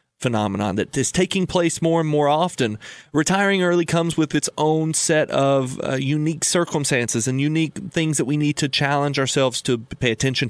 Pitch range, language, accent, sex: 130-165 Hz, English, American, male